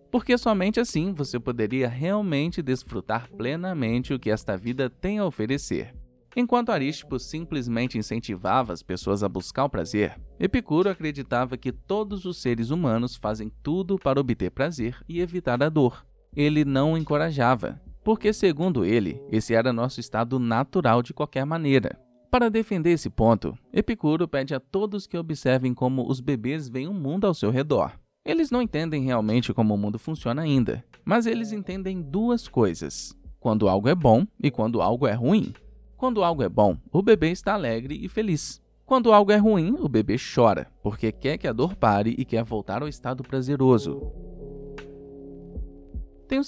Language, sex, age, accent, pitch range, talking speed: Portuguese, male, 20-39, Brazilian, 120-185 Hz, 165 wpm